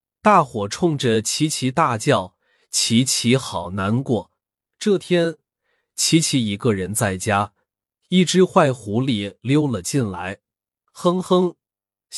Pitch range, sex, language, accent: 100-155 Hz, male, Chinese, native